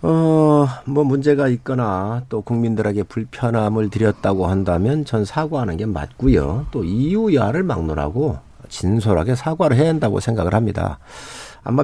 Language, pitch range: Korean, 95-145 Hz